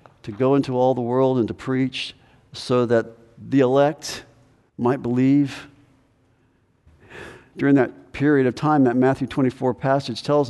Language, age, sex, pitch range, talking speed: English, 50-69, male, 115-135 Hz, 145 wpm